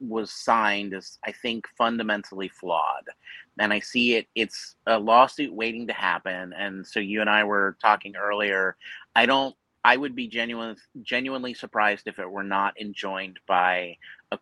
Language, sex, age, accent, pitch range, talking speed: English, male, 30-49, American, 100-120 Hz, 165 wpm